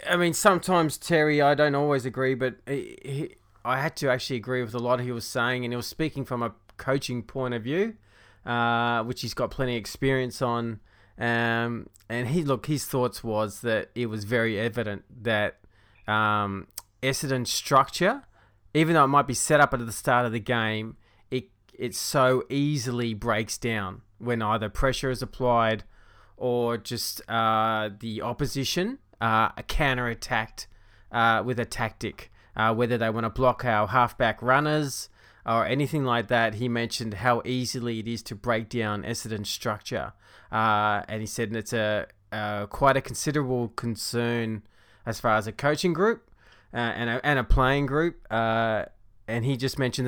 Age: 20-39